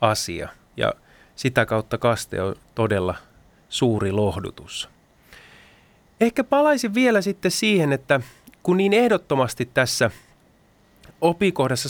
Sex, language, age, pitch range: male, Finnish, 30-49, 115-165 Hz